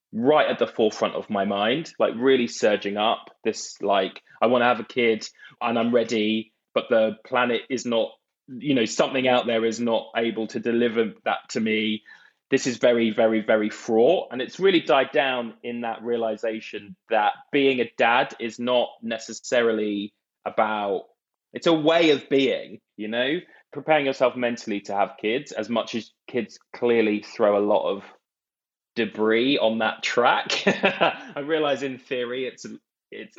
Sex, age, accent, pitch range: male, 20-39, British, 110-130 Hz